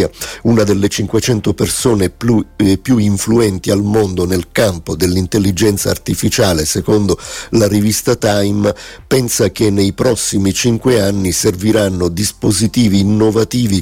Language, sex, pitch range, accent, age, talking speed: Italian, male, 95-115 Hz, native, 50-69, 110 wpm